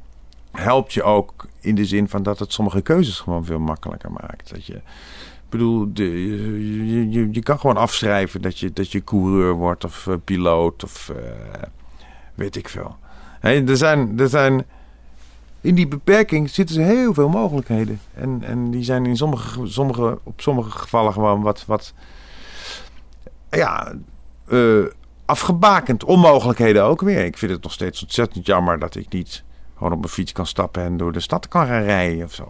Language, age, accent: Dutch, 50-69, Dutch